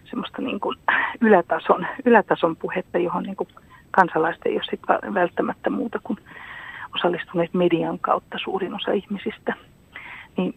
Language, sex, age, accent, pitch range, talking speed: Finnish, female, 40-59, native, 160-200 Hz, 120 wpm